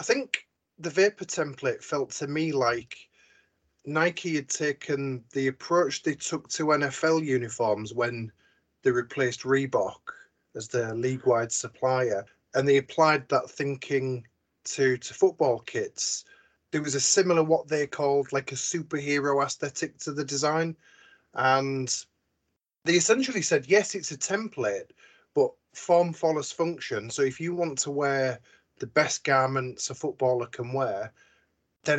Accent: British